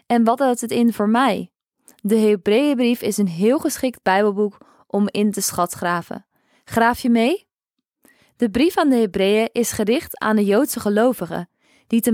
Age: 20-39